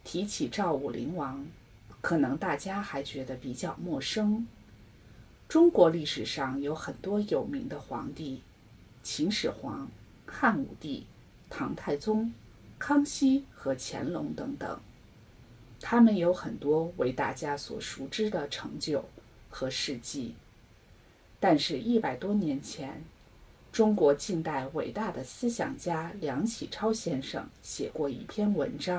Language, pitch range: English, 145-230 Hz